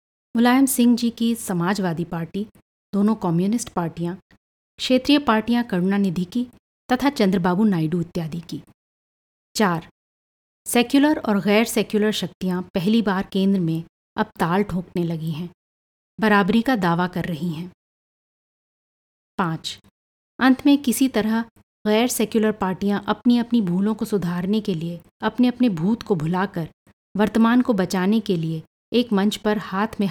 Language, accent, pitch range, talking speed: Hindi, native, 180-225 Hz, 140 wpm